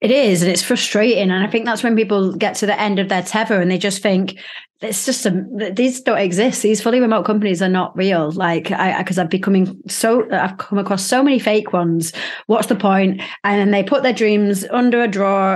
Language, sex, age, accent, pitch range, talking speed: English, female, 30-49, British, 180-215 Hz, 230 wpm